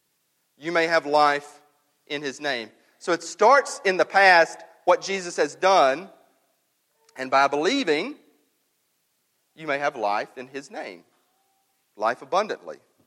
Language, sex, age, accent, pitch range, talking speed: English, male, 40-59, American, 145-205 Hz, 135 wpm